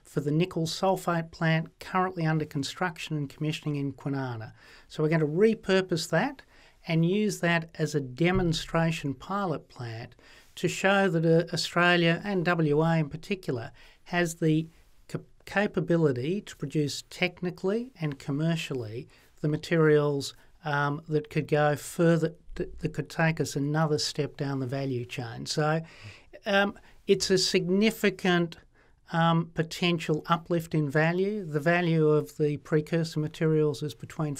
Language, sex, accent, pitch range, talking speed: English, male, Australian, 150-175 Hz, 135 wpm